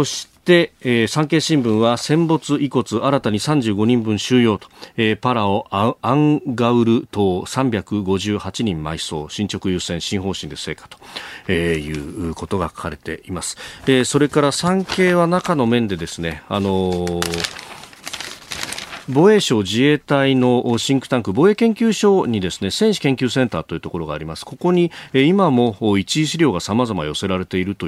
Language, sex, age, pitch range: Japanese, male, 40-59, 95-130 Hz